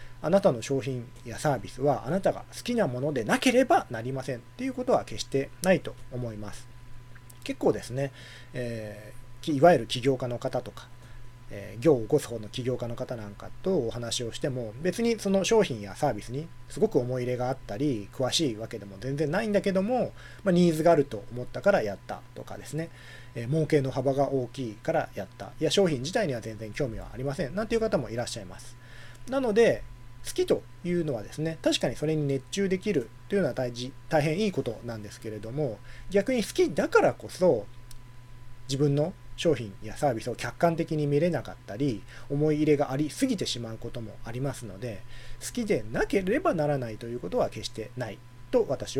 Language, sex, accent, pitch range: Japanese, male, native, 120-155 Hz